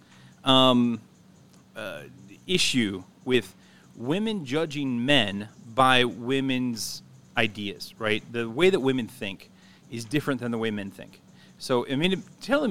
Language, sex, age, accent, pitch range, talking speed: English, male, 30-49, American, 110-145 Hz, 130 wpm